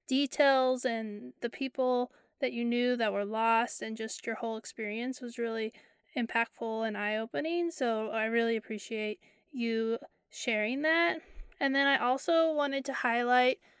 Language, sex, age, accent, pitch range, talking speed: English, female, 20-39, American, 225-265 Hz, 150 wpm